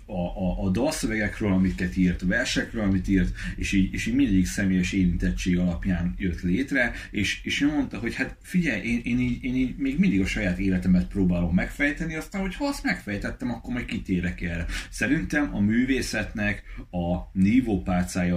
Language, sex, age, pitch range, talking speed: Hungarian, male, 30-49, 90-100 Hz, 165 wpm